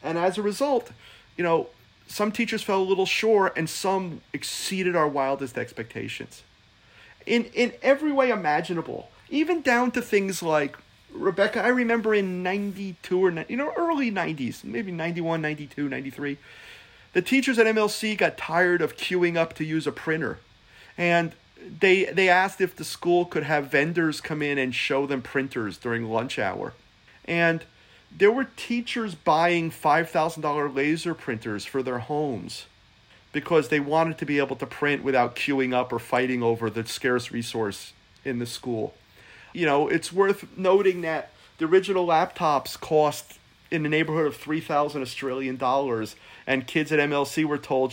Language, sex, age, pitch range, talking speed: English, male, 40-59, 135-190 Hz, 160 wpm